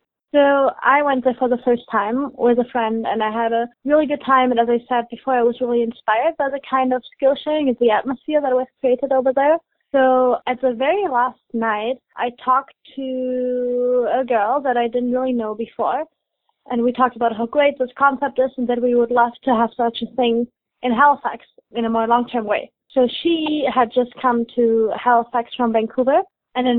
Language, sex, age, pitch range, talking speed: English, female, 20-39, 235-275 Hz, 215 wpm